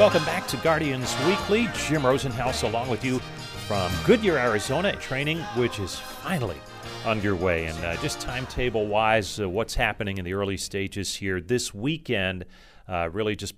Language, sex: English, male